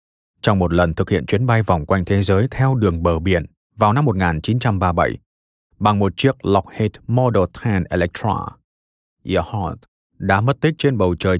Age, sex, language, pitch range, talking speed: 20-39, male, Vietnamese, 90-120 Hz, 170 wpm